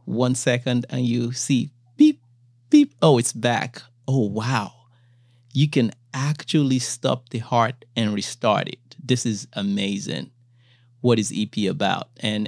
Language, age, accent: English, 30-49, American